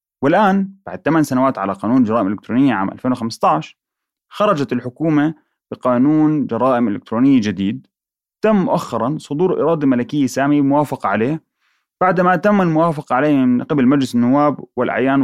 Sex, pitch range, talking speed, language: male, 120-170 Hz, 130 wpm, Arabic